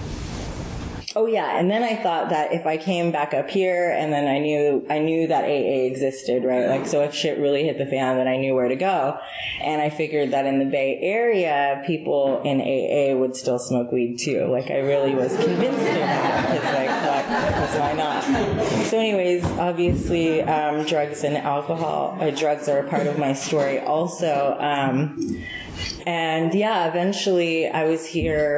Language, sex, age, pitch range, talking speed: English, female, 30-49, 135-155 Hz, 185 wpm